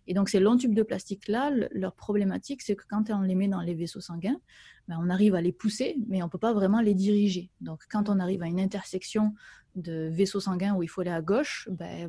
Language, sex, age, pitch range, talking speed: French, female, 20-39, 185-220 Hz, 255 wpm